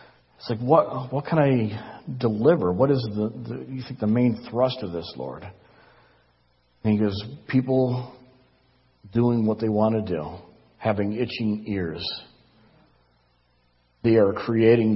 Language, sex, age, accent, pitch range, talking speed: English, male, 50-69, American, 90-125 Hz, 140 wpm